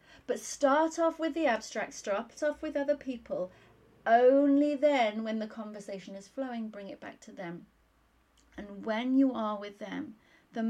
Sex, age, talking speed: female, 30-49, 170 wpm